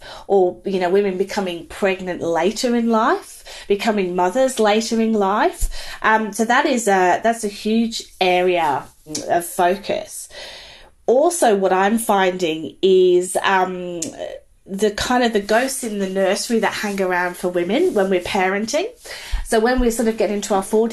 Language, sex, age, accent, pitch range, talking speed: English, female, 30-49, British, 180-220 Hz, 160 wpm